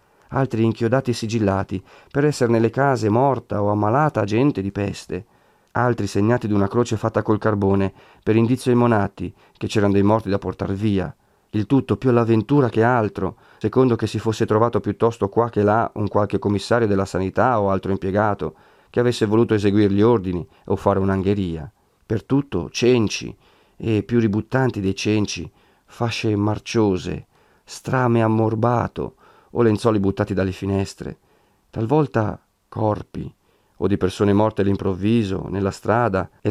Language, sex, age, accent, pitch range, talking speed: Italian, male, 40-59, native, 95-115 Hz, 150 wpm